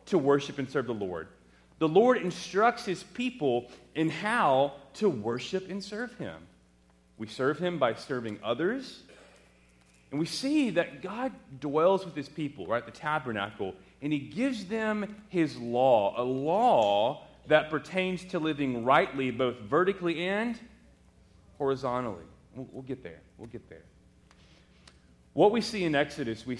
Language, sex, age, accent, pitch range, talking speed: English, male, 30-49, American, 115-185 Hz, 150 wpm